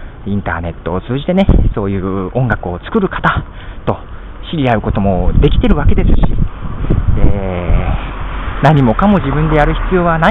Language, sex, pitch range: Japanese, male, 95-150 Hz